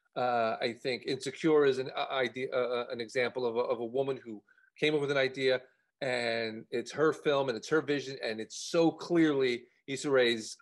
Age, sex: 40-59, male